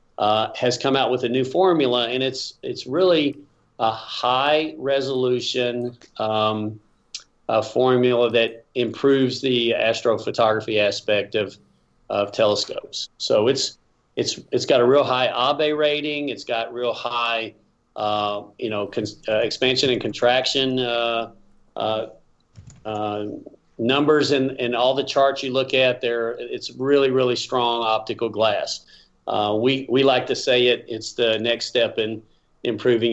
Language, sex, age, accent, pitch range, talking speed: English, male, 40-59, American, 110-130 Hz, 140 wpm